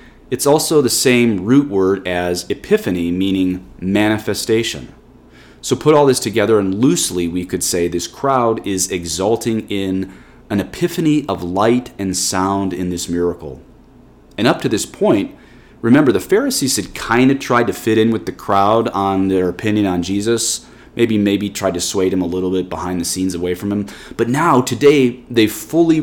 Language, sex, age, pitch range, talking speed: English, male, 30-49, 90-115 Hz, 175 wpm